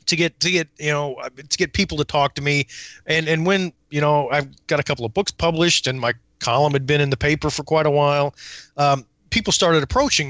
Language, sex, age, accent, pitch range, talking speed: English, male, 30-49, American, 130-165 Hz, 240 wpm